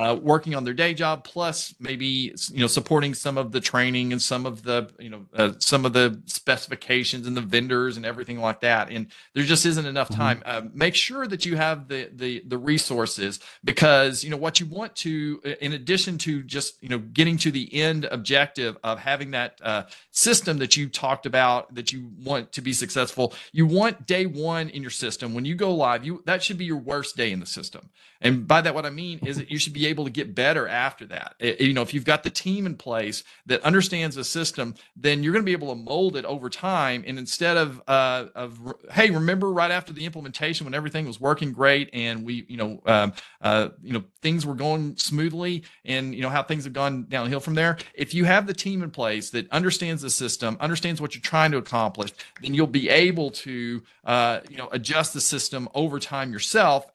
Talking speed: 230 wpm